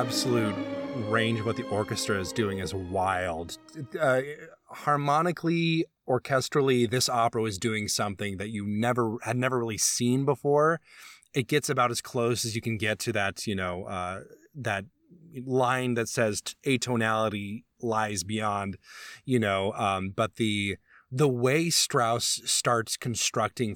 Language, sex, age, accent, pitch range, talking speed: English, male, 20-39, American, 105-130 Hz, 145 wpm